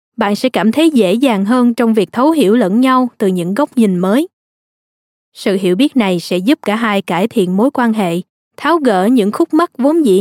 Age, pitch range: 20-39, 205-260 Hz